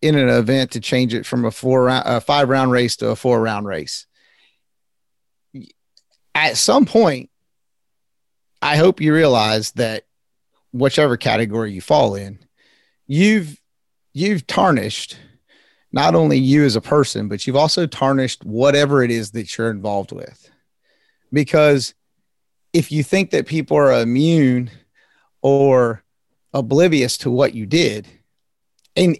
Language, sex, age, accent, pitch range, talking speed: English, male, 30-49, American, 120-155 Hz, 140 wpm